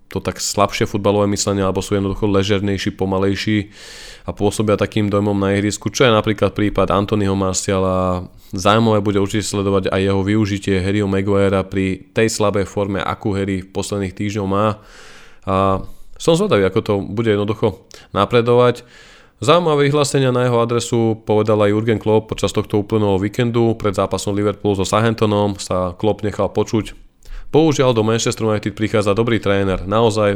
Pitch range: 95-110 Hz